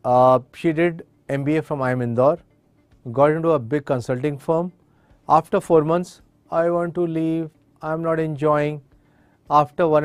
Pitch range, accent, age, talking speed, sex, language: 135-165 Hz, Indian, 40-59, 160 wpm, male, English